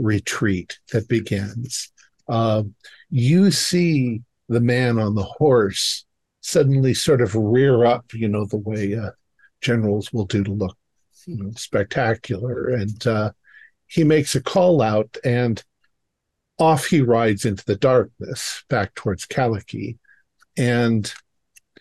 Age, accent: 50-69, American